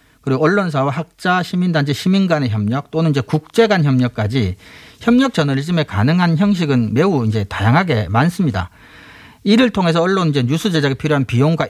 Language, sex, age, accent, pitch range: Korean, male, 40-59, native, 125-175 Hz